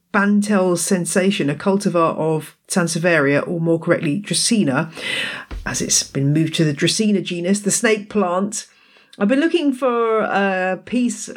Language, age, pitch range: English, 40-59, 160-220 Hz